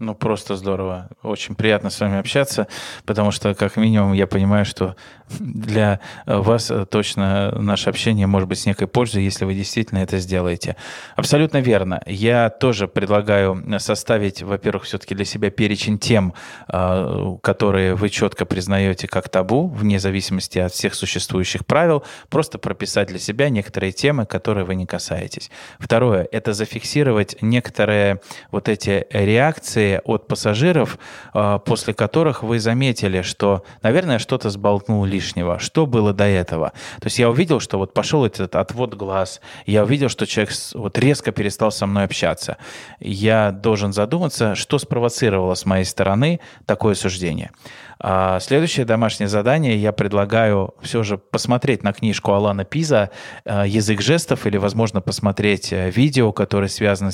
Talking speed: 140 wpm